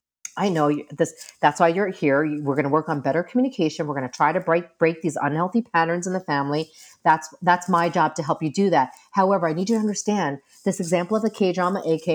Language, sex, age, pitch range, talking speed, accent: English, female, 40-59, 145-190 Hz, 235 wpm, American